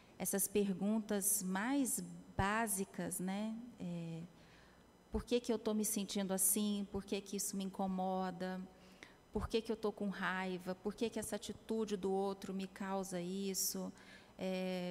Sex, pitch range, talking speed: female, 190-210 Hz, 155 wpm